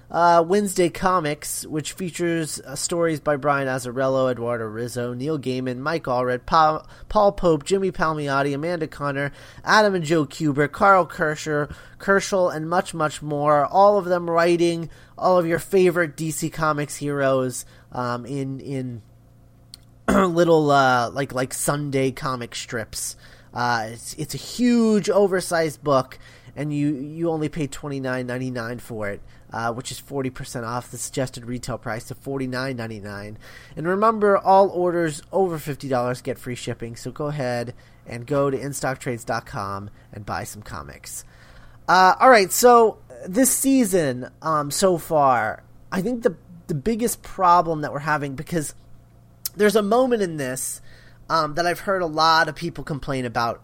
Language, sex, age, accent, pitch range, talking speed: English, male, 30-49, American, 125-170 Hz, 150 wpm